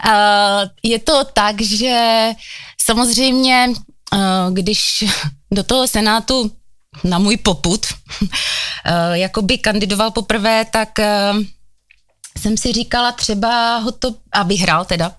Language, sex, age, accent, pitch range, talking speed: Czech, female, 20-39, native, 180-225 Hz, 100 wpm